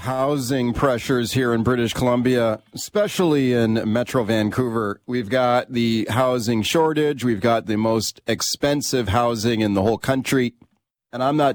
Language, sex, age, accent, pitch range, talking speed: English, male, 40-59, American, 115-145 Hz, 145 wpm